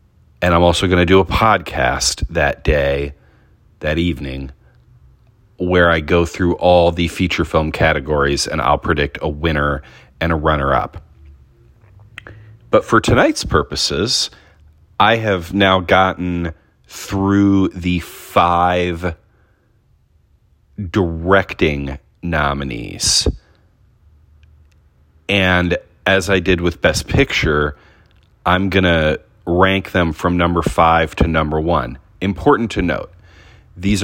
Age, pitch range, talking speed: 40-59, 80-100 Hz, 115 wpm